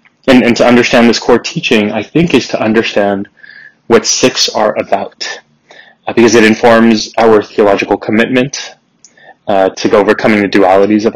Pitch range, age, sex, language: 100-120 Hz, 20-39, male, English